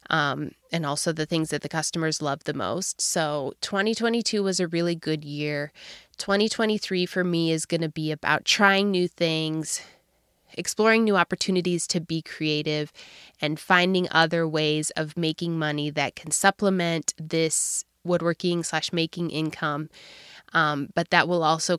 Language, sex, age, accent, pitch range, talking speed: English, female, 20-39, American, 160-185 Hz, 150 wpm